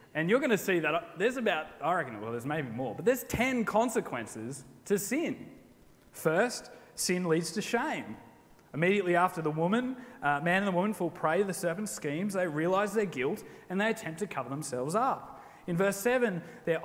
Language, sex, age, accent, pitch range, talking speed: English, male, 20-39, Australian, 155-220 Hz, 195 wpm